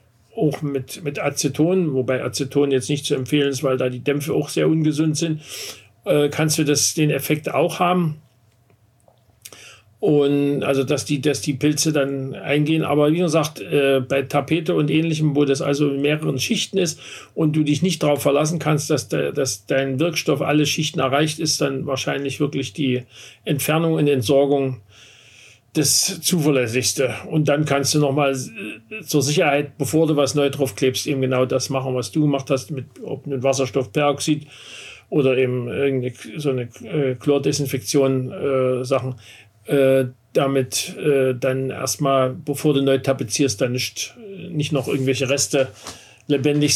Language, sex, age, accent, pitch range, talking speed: German, male, 50-69, German, 130-150 Hz, 160 wpm